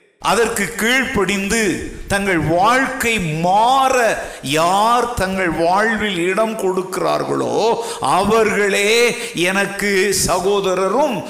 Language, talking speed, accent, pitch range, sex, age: Tamil, 70 wpm, native, 175-235 Hz, male, 50-69